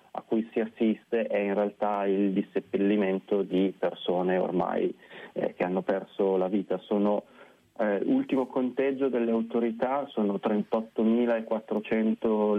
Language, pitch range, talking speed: Italian, 100-115 Hz, 125 wpm